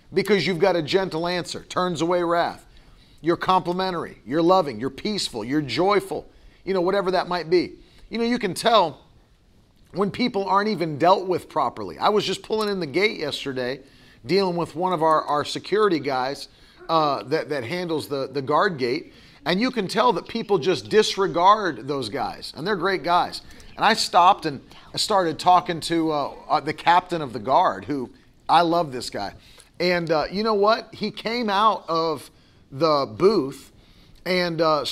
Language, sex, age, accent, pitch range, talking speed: English, male, 40-59, American, 160-200 Hz, 180 wpm